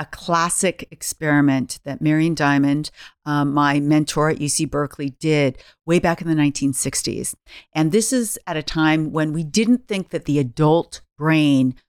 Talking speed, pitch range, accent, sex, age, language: 160 wpm, 150-210 Hz, American, female, 50-69, English